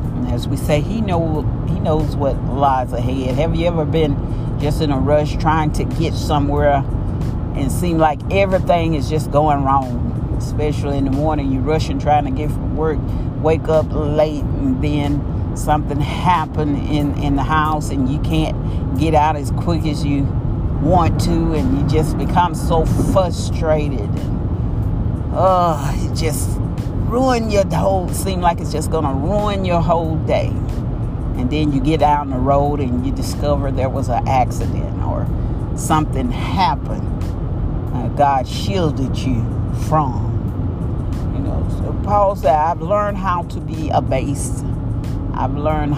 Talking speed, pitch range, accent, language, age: 160 wpm, 120-150 Hz, American, English, 50-69